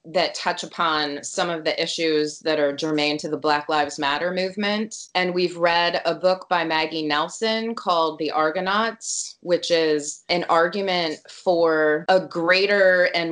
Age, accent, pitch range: 20-39, American, 145-175 Hz